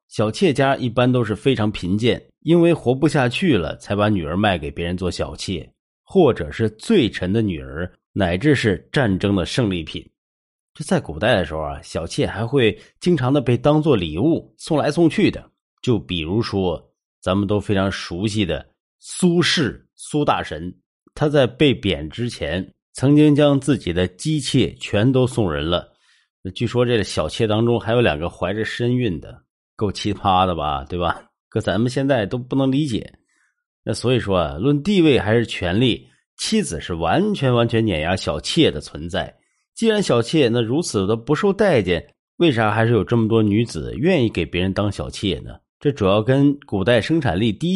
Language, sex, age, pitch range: Chinese, male, 30-49, 95-145 Hz